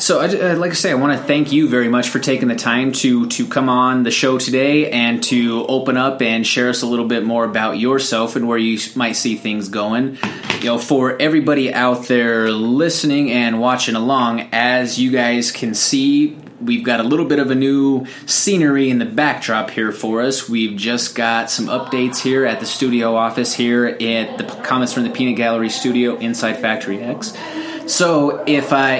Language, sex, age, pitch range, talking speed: English, male, 20-39, 120-145 Hz, 200 wpm